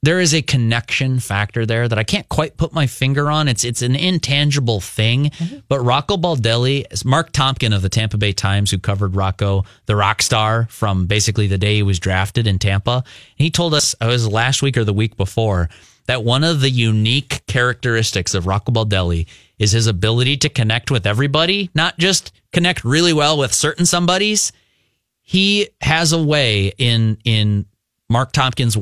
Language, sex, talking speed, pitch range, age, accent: English, male, 185 wpm, 110-145 Hz, 30-49, American